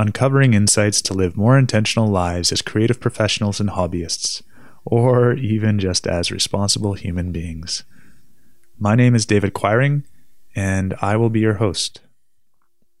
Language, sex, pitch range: English, male, 95-115 Hz